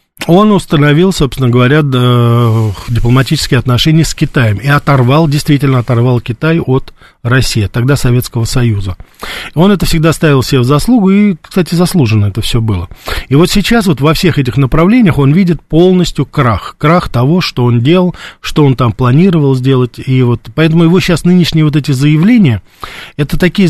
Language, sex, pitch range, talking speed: Russian, male, 125-165 Hz, 160 wpm